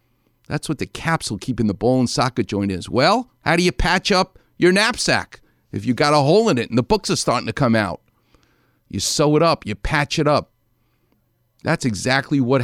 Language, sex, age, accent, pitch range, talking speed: English, male, 50-69, American, 110-150 Hz, 215 wpm